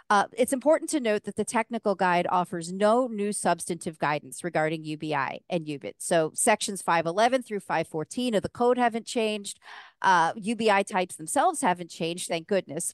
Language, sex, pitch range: English, female, 165-215 Hz